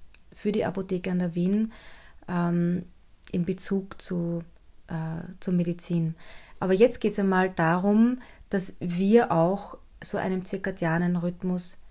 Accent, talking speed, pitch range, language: German, 125 wpm, 175-220 Hz, German